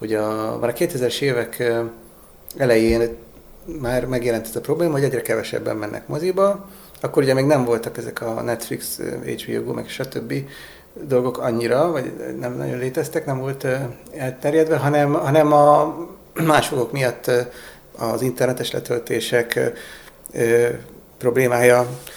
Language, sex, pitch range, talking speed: Hungarian, male, 120-160 Hz, 125 wpm